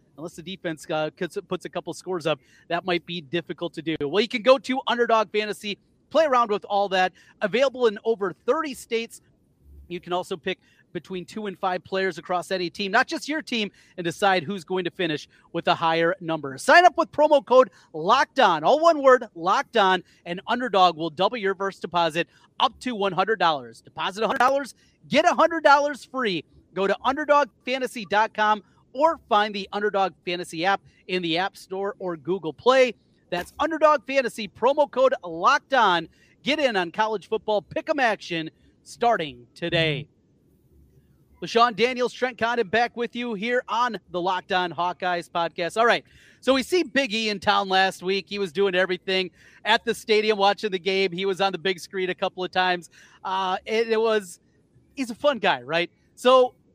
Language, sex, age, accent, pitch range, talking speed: English, male, 30-49, American, 175-235 Hz, 180 wpm